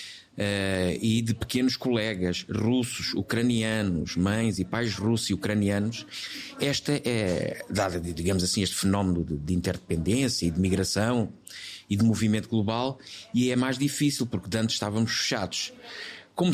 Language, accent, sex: Portuguese, Portuguese, male